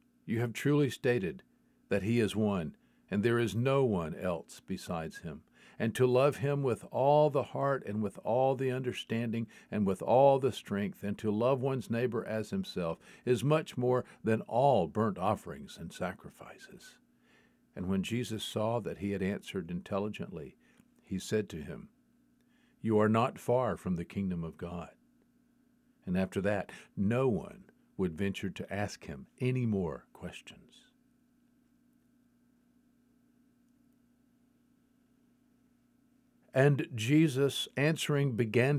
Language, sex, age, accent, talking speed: English, male, 50-69, American, 140 wpm